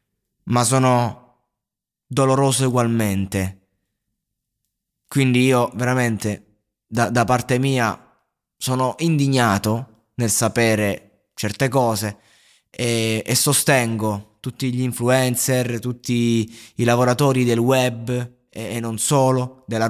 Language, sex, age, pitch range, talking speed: Italian, male, 20-39, 110-130 Hz, 100 wpm